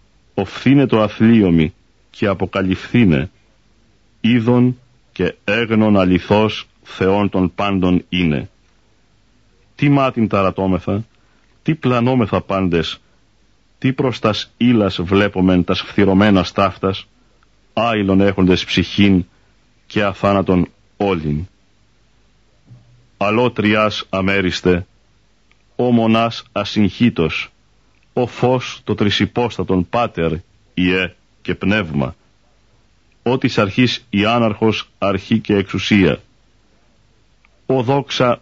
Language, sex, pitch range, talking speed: Greek, male, 95-115 Hz, 85 wpm